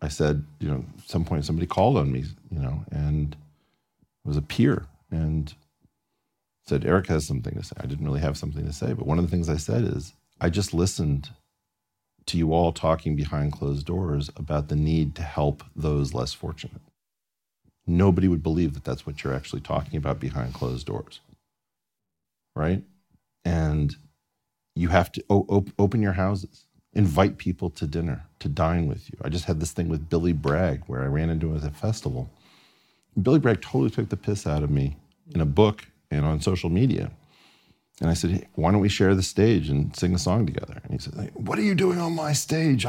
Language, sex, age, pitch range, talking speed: English, male, 40-59, 75-100 Hz, 205 wpm